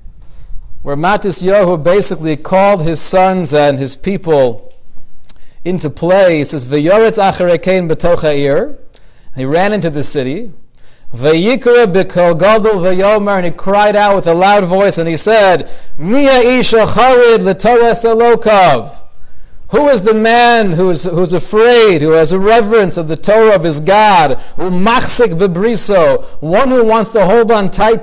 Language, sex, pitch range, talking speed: English, male, 155-235 Hz, 145 wpm